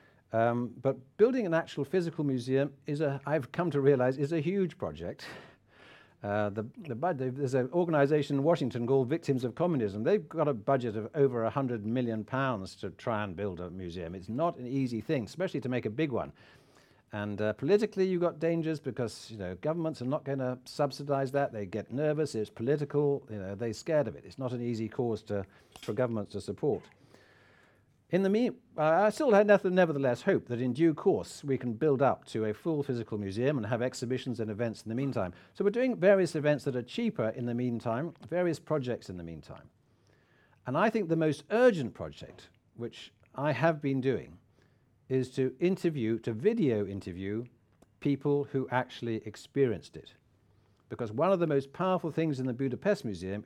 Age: 60-79